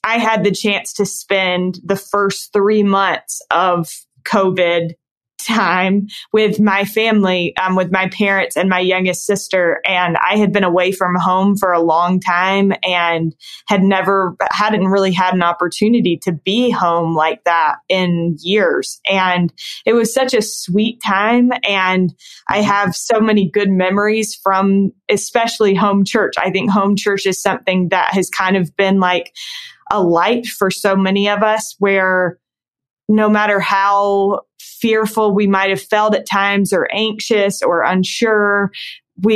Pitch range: 185-210 Hz